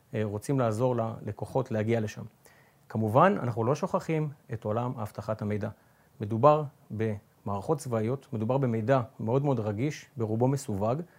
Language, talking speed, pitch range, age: Hebrew, 125 wpm, 110-145 Hz, 40-59